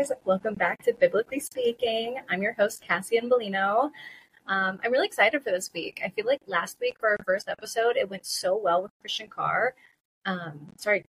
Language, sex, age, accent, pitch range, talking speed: English, female, 20-39, American, 175-220 Hz, 185 wpm